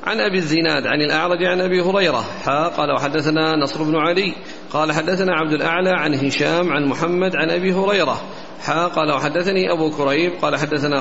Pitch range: 150-180 Hz